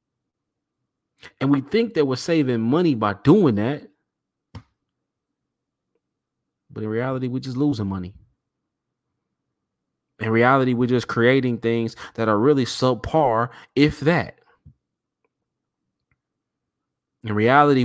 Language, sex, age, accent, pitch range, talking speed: English, male, 20-39, American, 115-170 Hz, 105 wpm